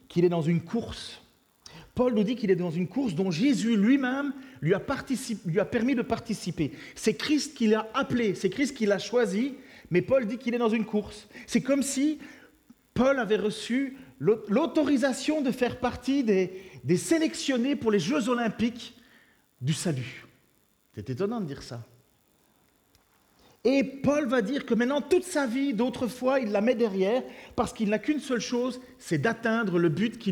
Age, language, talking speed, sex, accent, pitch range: 40-59, French, 180 wpm, male, French, 185-260 Hz